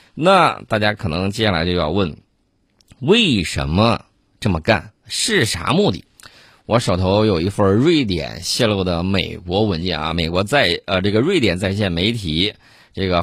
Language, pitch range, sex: Chinese, 95-120 Hz, male